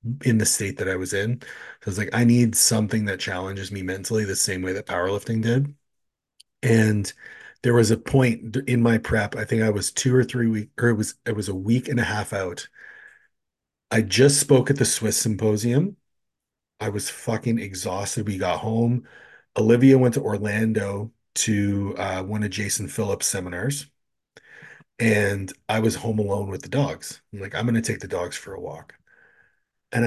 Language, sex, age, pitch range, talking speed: English, male, 30-49, 100-120 Hz, 190 wpm